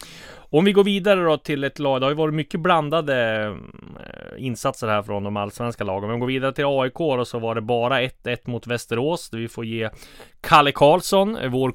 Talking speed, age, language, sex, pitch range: 210 wpm, 20-39, English, male, 105-140 Hz